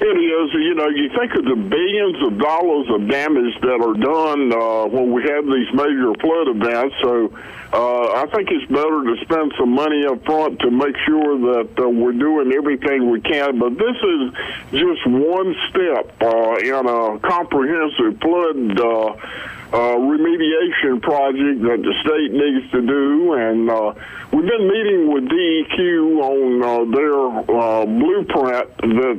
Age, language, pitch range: 50-69, English, 125-165 Hz